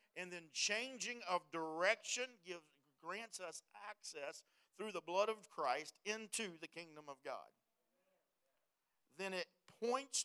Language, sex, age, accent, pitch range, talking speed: English, male, 50-69, American, 170-220 Hz, 130 wpm